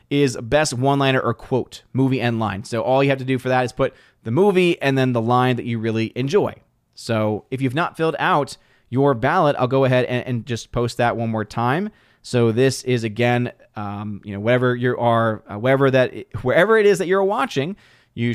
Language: English